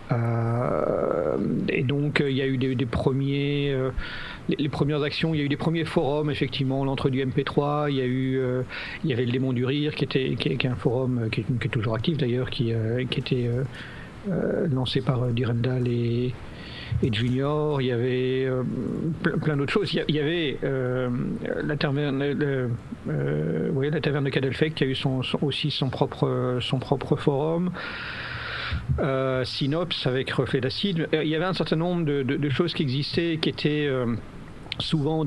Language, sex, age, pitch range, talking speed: French, male, 50-69, 130-150 Hz, 205 wpm